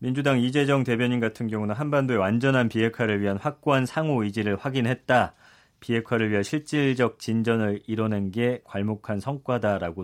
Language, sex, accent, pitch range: Korean, male, native, 105-140 Hz